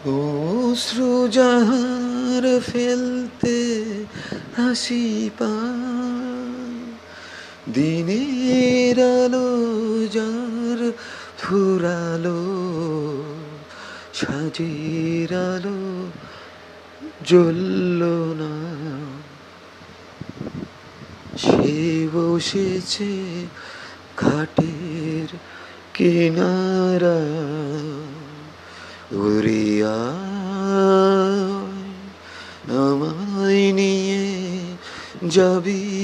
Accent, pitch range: native, 155-195 Hz